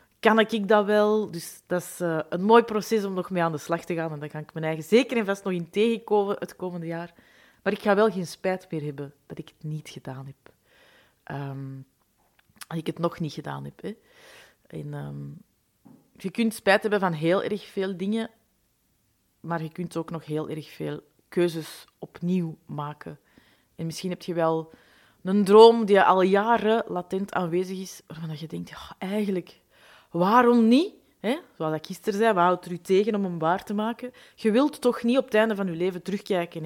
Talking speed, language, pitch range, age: 200 wpm, Dutch, 160-205 Hz, 30-49